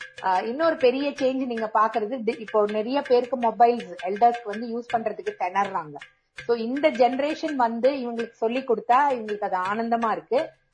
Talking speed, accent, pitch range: 140 wpm, Indian, 200-255 Hz